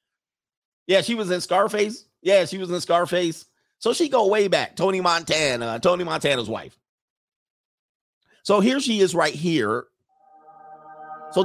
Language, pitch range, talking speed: English, 135-210 Hz, 140 wpm